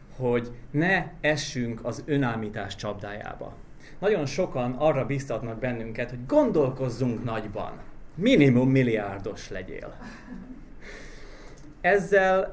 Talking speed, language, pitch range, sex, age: 85 wpm, Hungarian, 120-160 Hz, male, 30-49